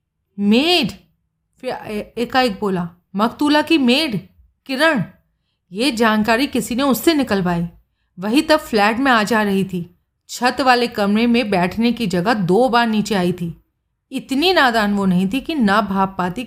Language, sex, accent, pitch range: Hindi, female, native, 190-250 Hz